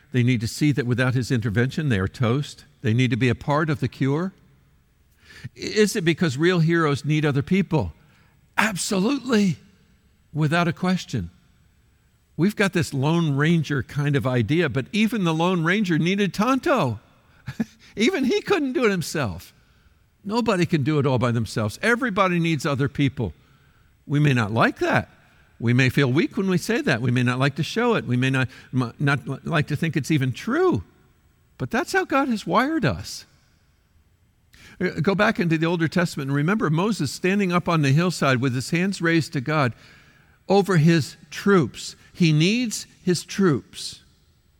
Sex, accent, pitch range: male, American, 130-190 Hz